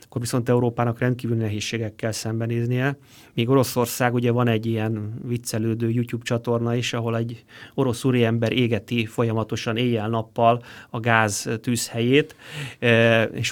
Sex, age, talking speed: male, 30-49, 120 wpm